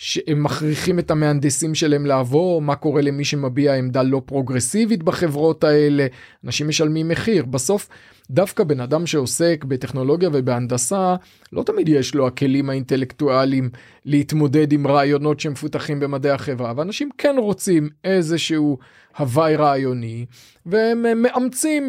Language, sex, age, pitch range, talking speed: Hebrew, male, 30-49, 135-170 Hz, 125 wpm